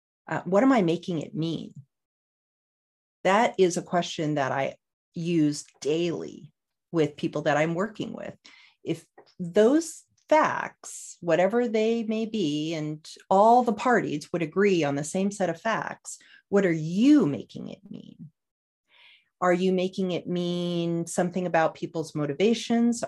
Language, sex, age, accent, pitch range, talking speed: English, female, 40-59, American, 155-230 Hz, 145 wpm